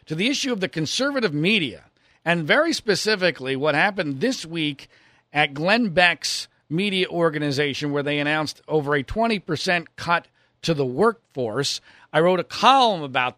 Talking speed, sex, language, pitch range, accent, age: 155 wpm, male, English, 135-165 Hz, American, 40-59